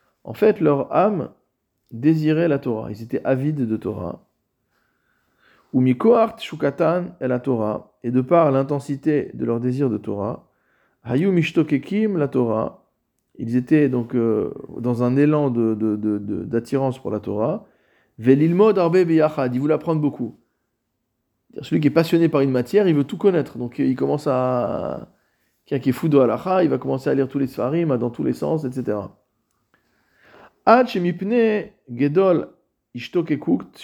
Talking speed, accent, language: 150 wpm, French, French